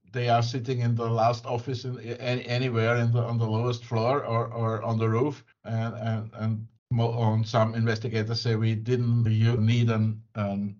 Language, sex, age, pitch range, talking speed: English, male, 50-69, 115-130 Hz, 195 wpm